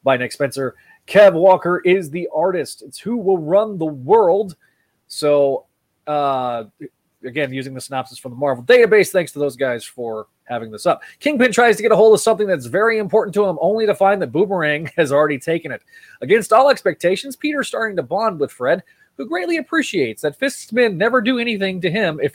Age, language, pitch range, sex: 30-49, English, 140-230 Hz, male